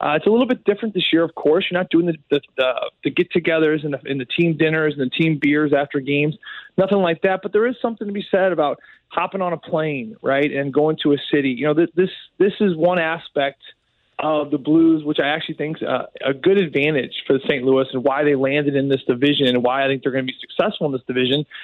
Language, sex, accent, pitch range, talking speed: English, male, American, 145-180 Hz, 260 wpm